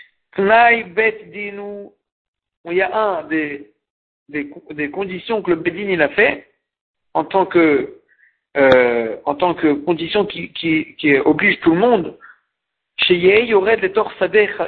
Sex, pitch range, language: male, 155-215 Hz, French